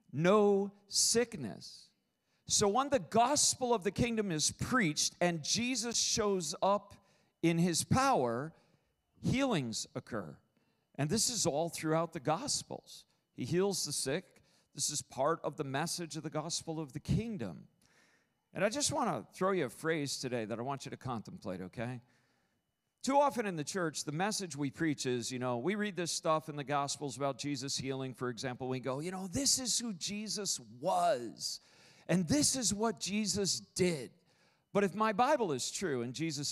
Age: 50-69